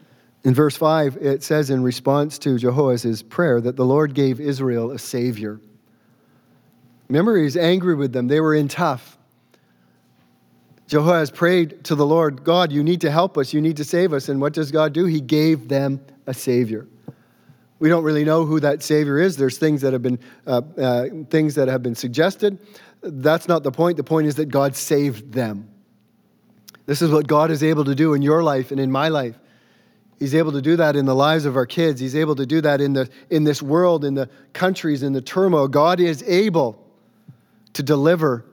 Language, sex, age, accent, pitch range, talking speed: English, male, 40-59, American, 125-155 Hz, 200 wpm